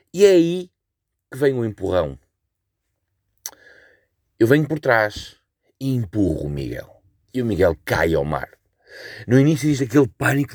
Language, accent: Portuguese, Portuguese